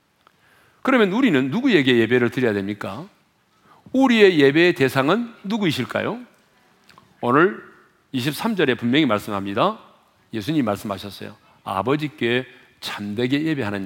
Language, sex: Korean, male